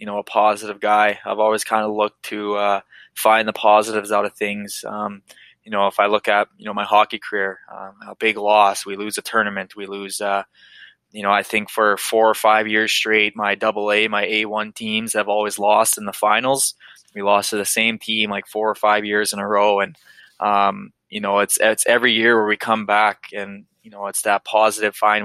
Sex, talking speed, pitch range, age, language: male, 225 wpm, 100-110 Hz, 20-39, English